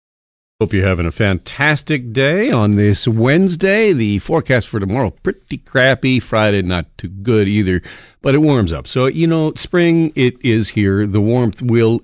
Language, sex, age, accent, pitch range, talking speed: English, male, 50-69, American, 85-125 Hz, 170 wpm